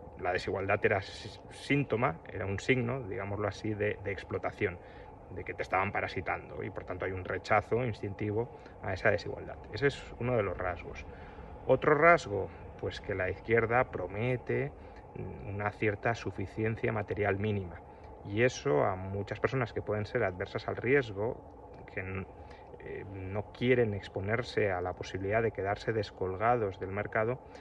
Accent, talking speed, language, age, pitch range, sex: Spanish, 150 wpm, Spanish, 30-49, 95-115 Hz, male